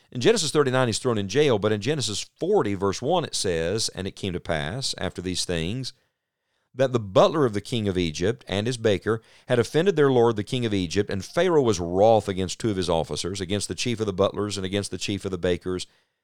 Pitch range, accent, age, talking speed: 100-130 Hz, American, 50-69, 235 wpm